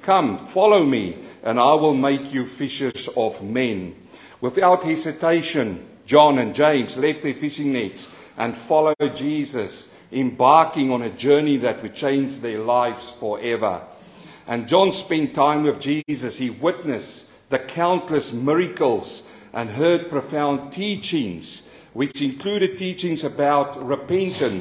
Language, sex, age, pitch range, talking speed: English, male, 50-69, 135-180 Hz, 130 wpm